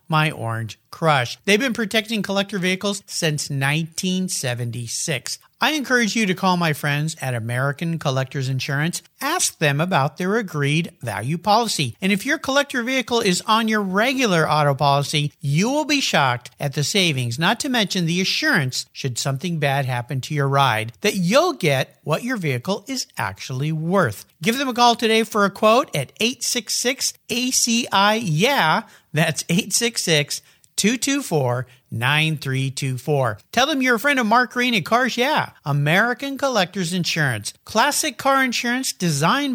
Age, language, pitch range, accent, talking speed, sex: 50-69, English, 145-240 Hz, American, 150 wpm, male